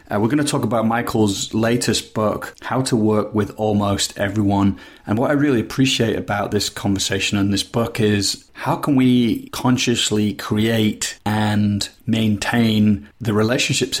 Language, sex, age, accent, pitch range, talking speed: English, male, 30-49, British, 100-115 Hz, 155 wpm